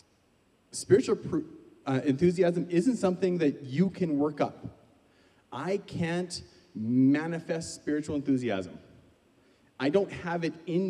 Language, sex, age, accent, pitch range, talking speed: English, male, 30-49, American, 115-165 Hz, 115 wpm